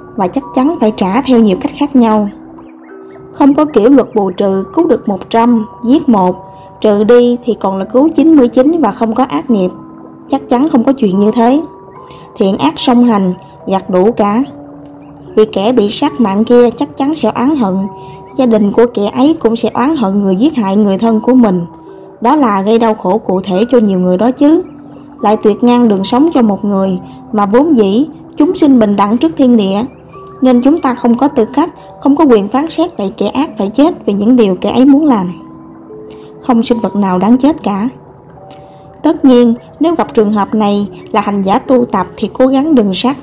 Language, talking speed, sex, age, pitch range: Vietnamese, 210 wpm, female, 20-39, 200-265 Hz